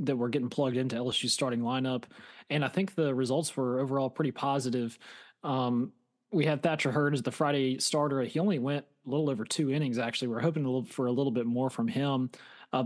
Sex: male